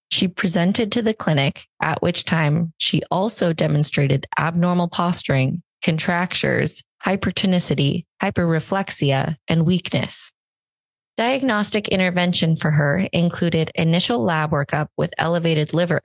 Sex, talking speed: female, 110 wpm